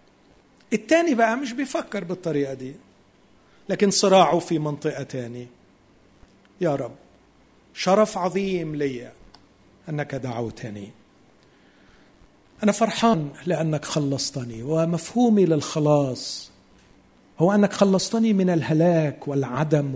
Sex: male